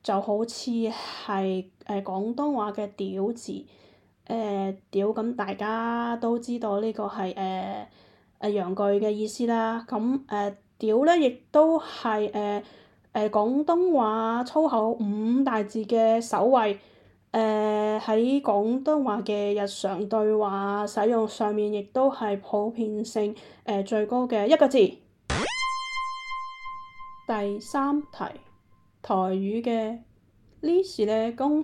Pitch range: 200-240 Hz